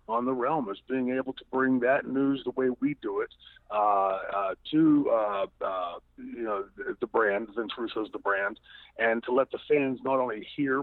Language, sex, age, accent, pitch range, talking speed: English, male, 50-69, American, 120-175 Hz, 200 wpm